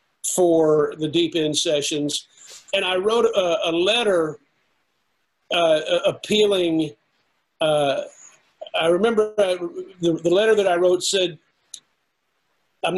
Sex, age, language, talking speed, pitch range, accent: male, 50-69, English, 115 wpm, 160-185 Hz, American